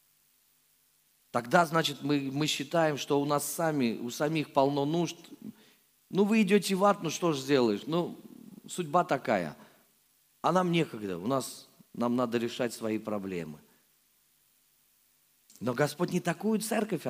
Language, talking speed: Russian, 140 wpm